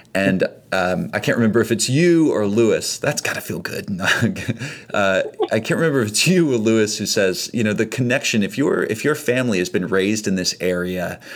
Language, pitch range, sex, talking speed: English, 90-120 Hz, male, 215 wpm